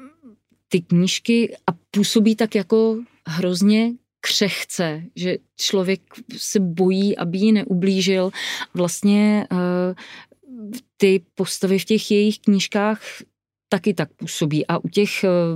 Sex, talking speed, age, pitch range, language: female, 110 wpm, 30-49, 180-205 Hz, Czech